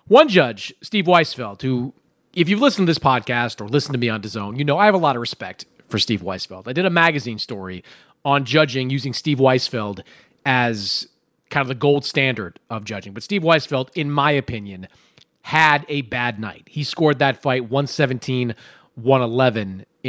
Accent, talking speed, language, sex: American, 180 wpm, English, male